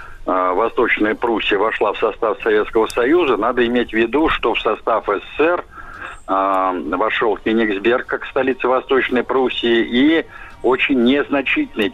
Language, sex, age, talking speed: Russian, male, 60-79, 125 wpm